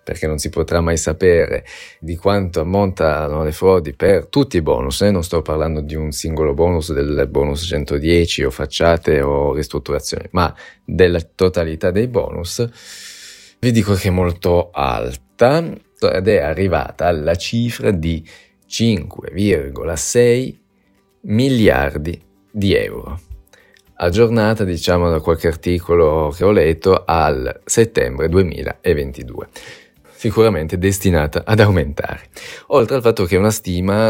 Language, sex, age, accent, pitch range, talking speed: Italian, male, 20-39, native, 80-95 Hz, 125 wpm